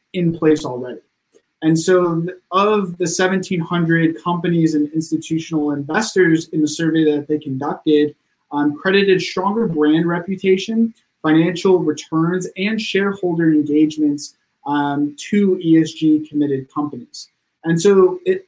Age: 20-39